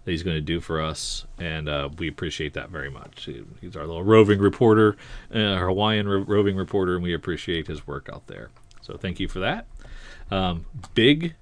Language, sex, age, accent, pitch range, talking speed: English, male, 40-59, American, 90-115 Hz, 195 wpm